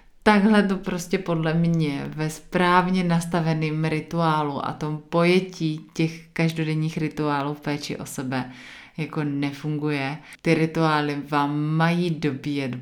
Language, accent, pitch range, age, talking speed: Czech, native, 150-180 Hz, 30-49, 120 wpm